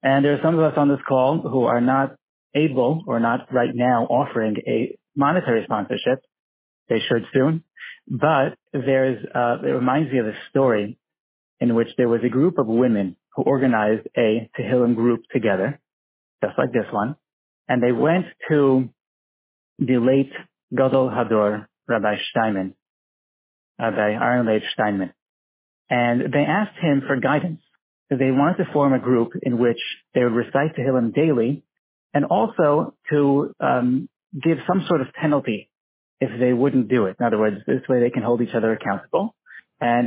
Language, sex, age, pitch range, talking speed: English, male, 30-49, 120-145 Hz, 165 wpm